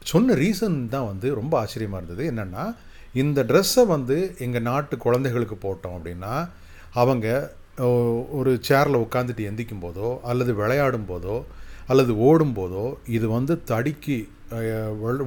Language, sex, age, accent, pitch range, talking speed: Tamil, male, 30-49, native, 105-140 Hz, 125 wpm